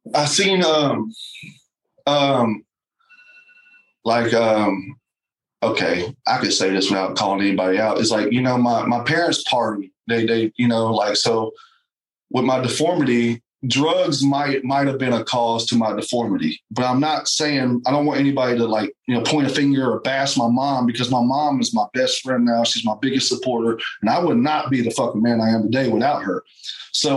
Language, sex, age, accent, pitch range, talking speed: English, male, 30-49, American, 120-165 Hz, 190 wpm